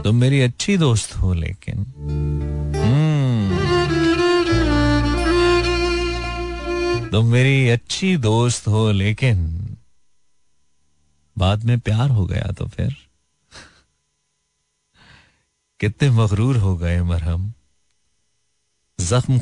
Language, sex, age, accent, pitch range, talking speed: Hindi, male, 40-59, native, 90-135 Hz, 80 wpm